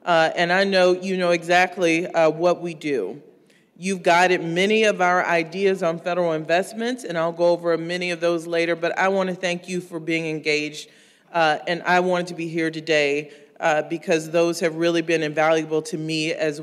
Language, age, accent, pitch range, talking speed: English, 40-59, American, 160-185 Hz, 200 wpm